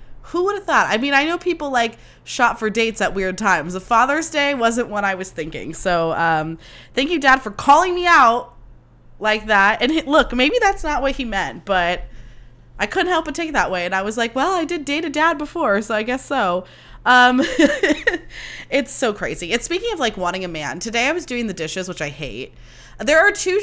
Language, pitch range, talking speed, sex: English, 170-260 Hz, 230 wpm, female